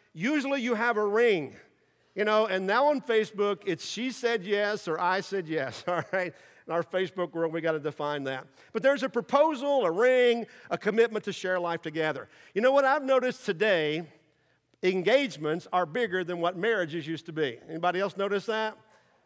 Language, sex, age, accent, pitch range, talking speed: English, male, 50-69, American, 170-235 Hz, 190 wpm